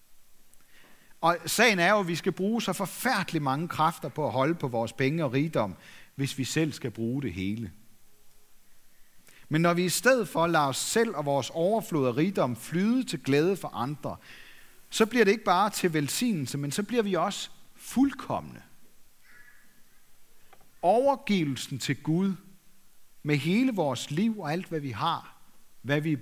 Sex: male